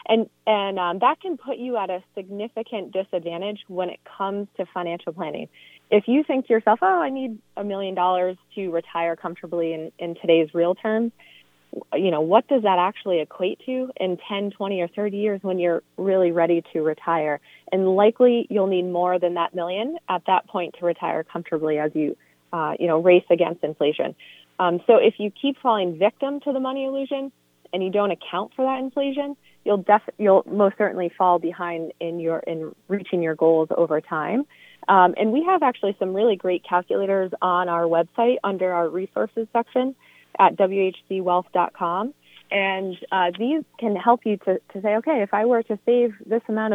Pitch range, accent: 175-225 Hz, American